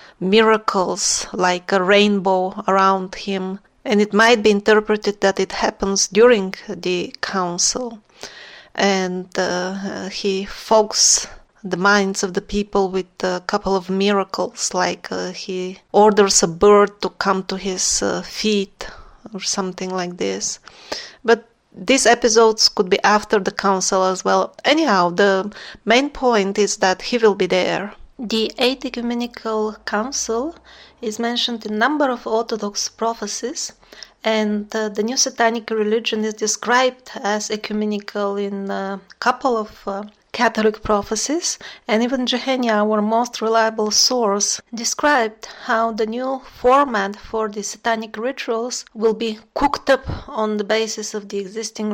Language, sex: English, female